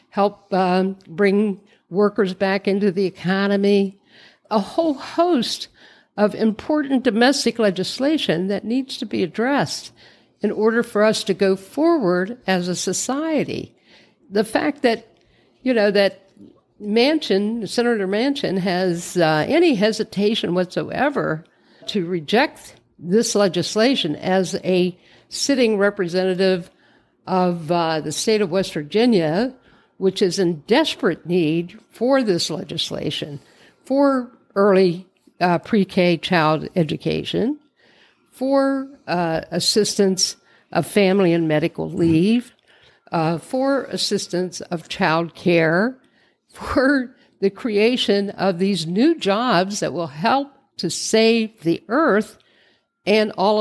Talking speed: 115 wpm